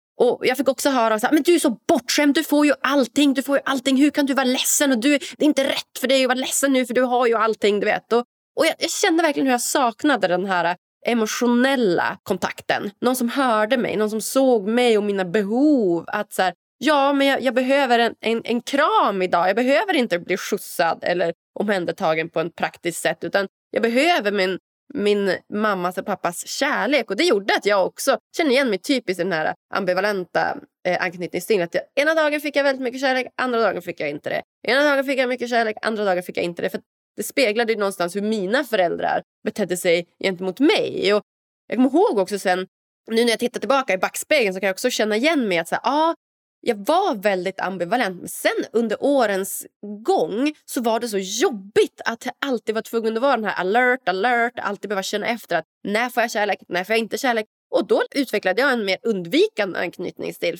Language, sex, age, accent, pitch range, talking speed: Swedish, female, 20-39, native, 195-275 Hz, 220 wpm